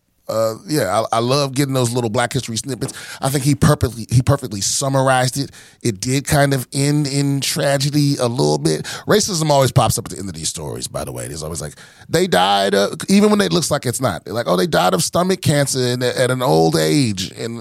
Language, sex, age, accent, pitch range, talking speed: English, male, 30-49, American, 100-135 Hz, 230 wpm